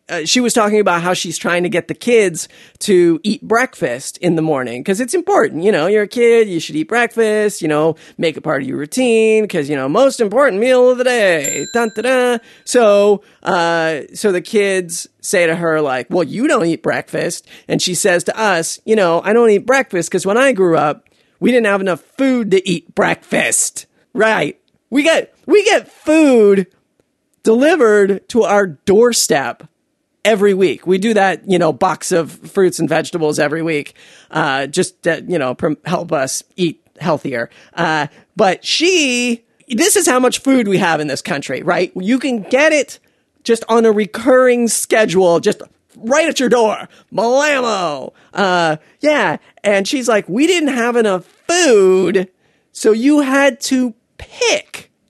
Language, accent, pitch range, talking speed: English, American, 175-250 Hz, 180 wpm